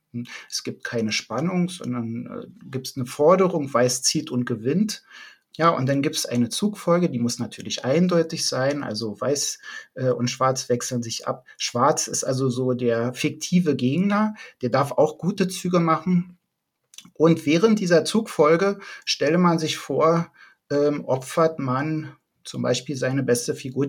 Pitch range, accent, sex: 130-175 Hz, German, male